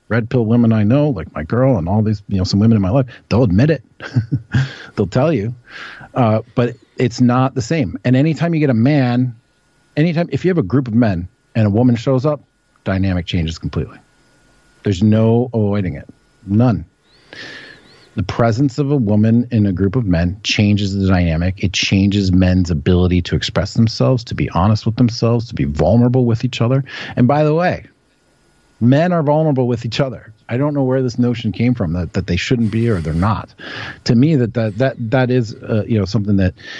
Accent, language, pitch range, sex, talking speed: American, English, 100-130 Hz, male, 205 wpm